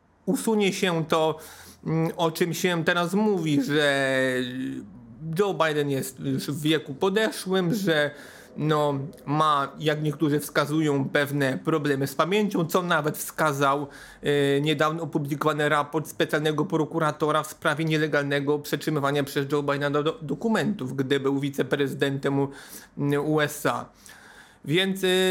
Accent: native